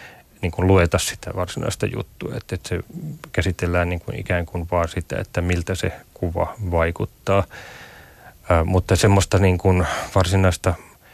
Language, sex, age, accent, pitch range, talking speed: Finnish, male, 30-49, native, 90-100 Hz, 140 wpm